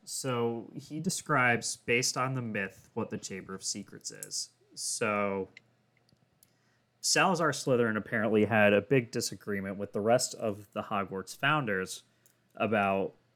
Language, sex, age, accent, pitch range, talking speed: English, male, 20-39, American, 100-125 Hz, 130 wpm